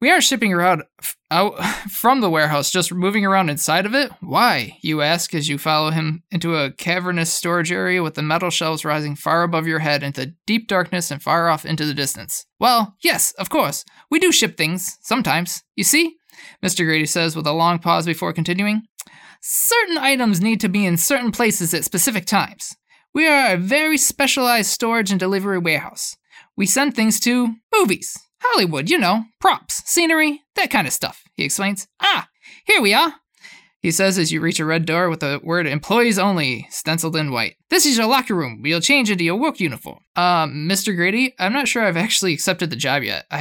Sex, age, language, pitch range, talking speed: male, 20-39, English, 165-235 Hz, 200 wpm